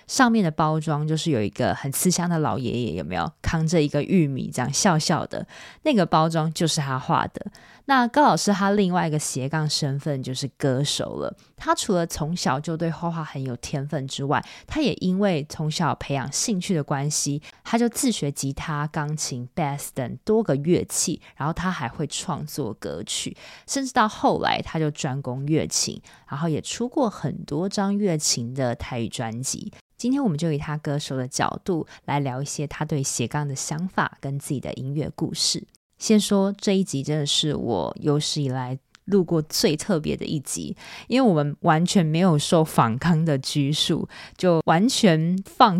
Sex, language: female, Chinese